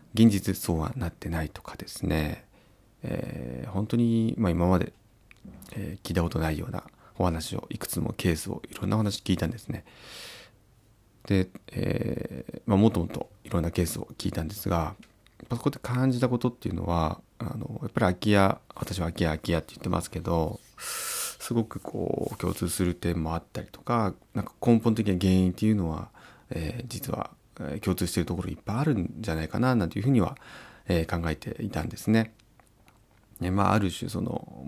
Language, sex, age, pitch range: Japanese, male, 30-49, 85-115 Hz